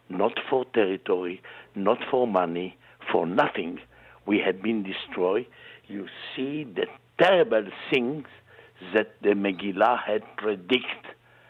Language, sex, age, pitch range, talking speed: English, male, 60-79, 100-130 Hz, 115 wpm